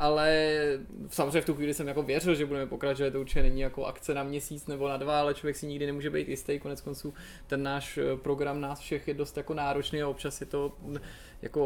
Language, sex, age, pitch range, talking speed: Czech, male, 20-39, 135-155 Hz, 225 wpm